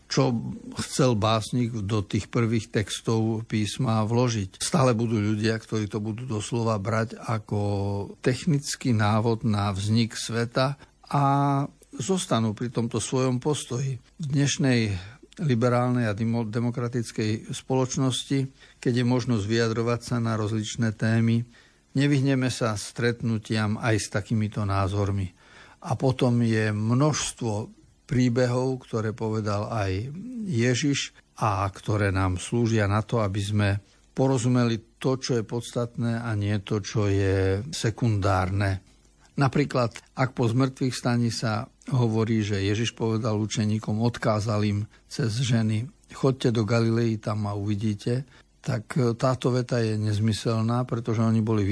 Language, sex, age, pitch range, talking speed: Slovak, male, 60-79, 105-125 Hz, 125 wpm